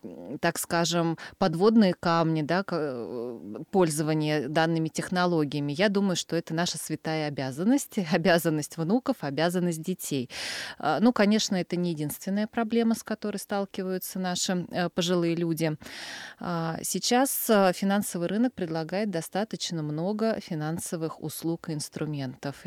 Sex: female